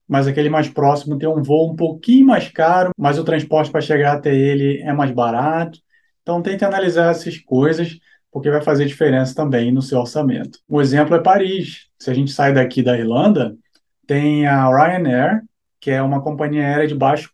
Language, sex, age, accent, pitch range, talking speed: Portuguese, male, 20-39, Brazilian, 130-180 Hz, 190 wpm